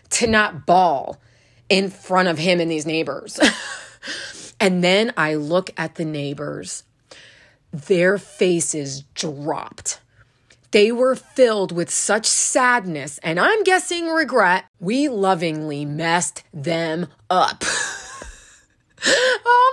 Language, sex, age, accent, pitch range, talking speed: English, female, 30-49, American, 160-245 Hz, 110 wpm